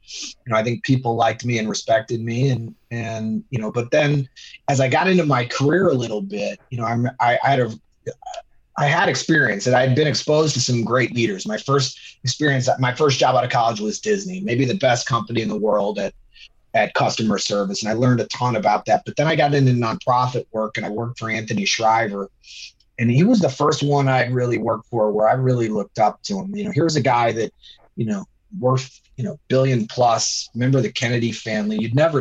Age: 30-49